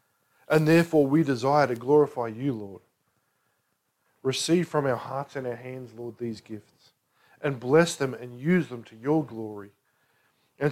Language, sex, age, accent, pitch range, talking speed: English, male, 40-59, Australian, 120-160 Hz, 155 wpm